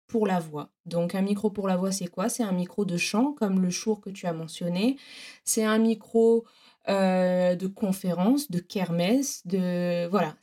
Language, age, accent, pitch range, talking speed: French, 20-39, French, 185-220 Hz, 185 wpm